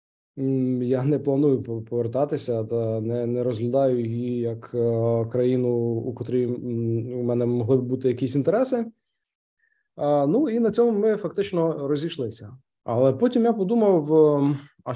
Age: 20-39